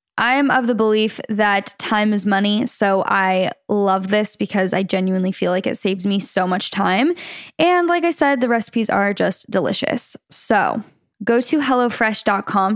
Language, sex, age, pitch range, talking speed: English, female, 10-29, 205-250 Hz, 175 wpm